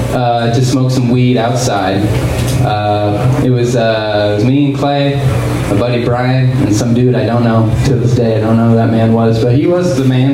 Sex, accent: male, American